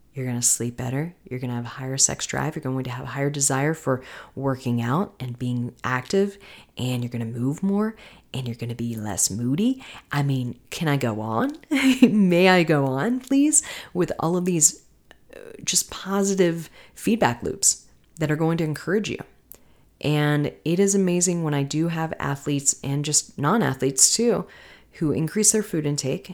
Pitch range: 130-165 Hz